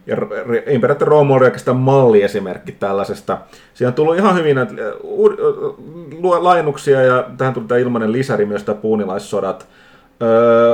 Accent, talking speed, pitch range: native, 140 wpm, 110-185 Hz